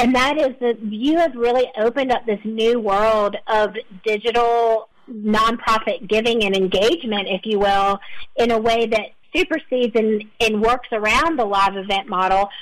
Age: 40-59